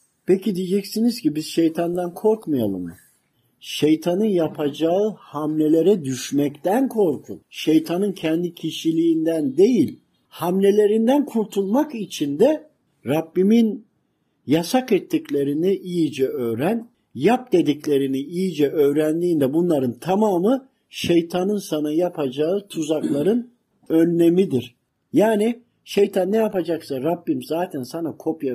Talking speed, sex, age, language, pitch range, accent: 90 wpm, male, 50-69, Turkish, 155-215 Hz, native